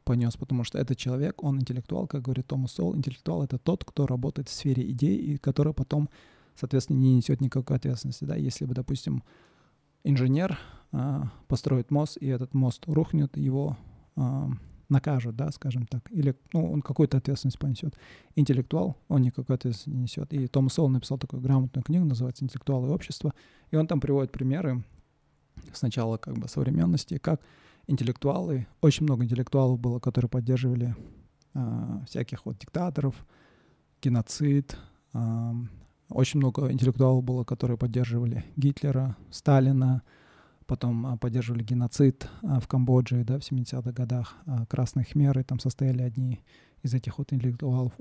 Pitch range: 125-145 Hz